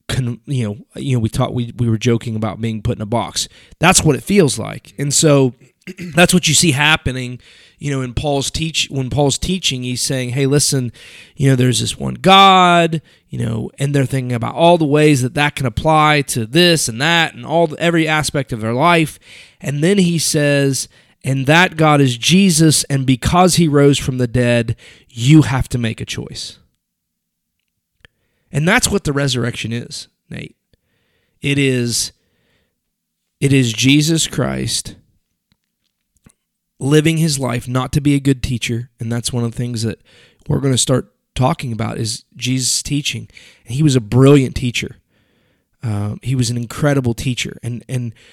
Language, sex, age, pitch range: English, male, 30-49, 120-150 Hz